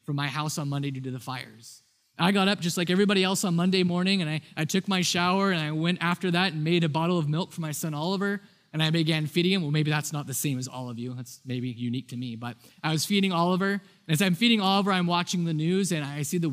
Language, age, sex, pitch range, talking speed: English, 20-39, male, 150-185 Hz, 285 wpm